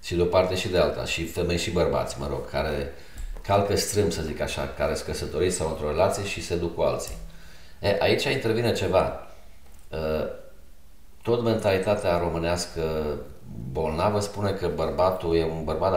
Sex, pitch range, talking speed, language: male, 75-100 Hz, 165 wpm, Romanian